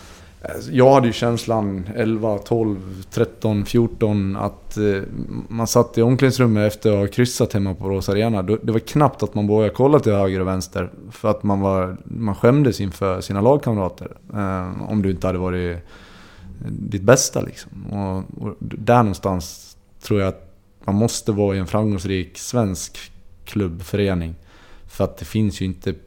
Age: 30-49